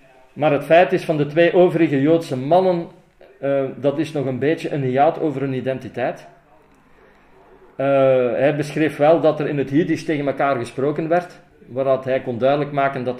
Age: 40-59